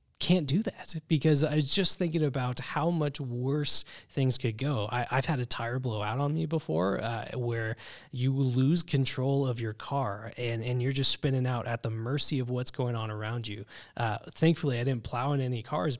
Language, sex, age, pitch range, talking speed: English, male, 20-39, 115-145 Hz, 210 wpm